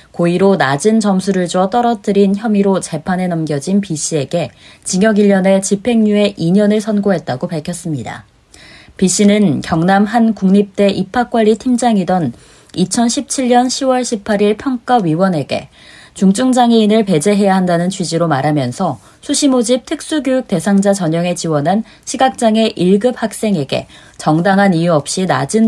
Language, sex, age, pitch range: Korean, female, 20-39, 175-235 Hz